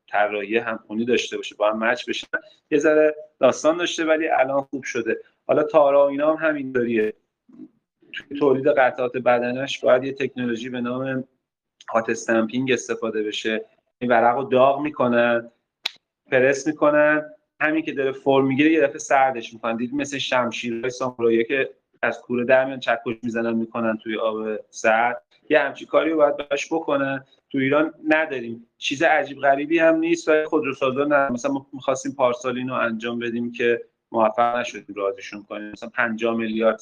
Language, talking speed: Persian, 150 wpm